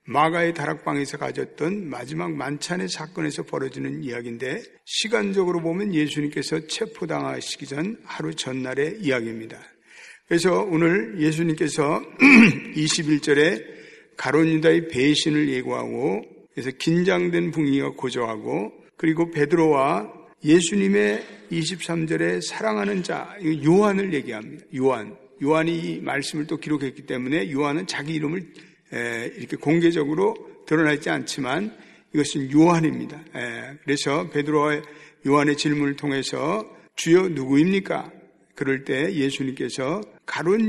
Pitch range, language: 145-175 Hz, Korean